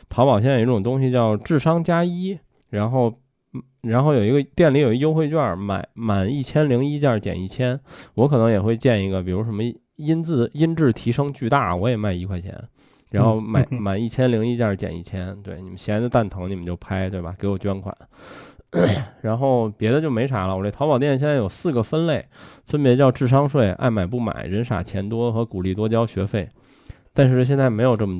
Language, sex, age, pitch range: Chinese, male, 20-39, 105-140 Hz